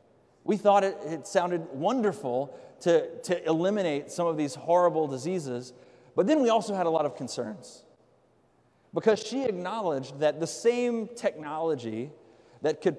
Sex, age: male, 30-49